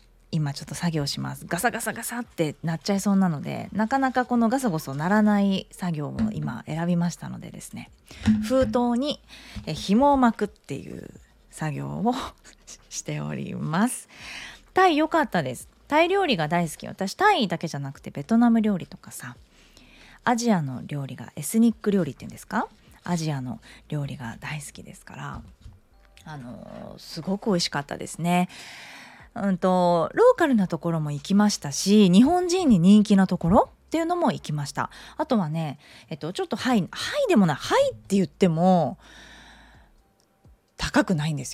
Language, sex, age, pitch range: Japanese, female, 20-39, 150-230 Hz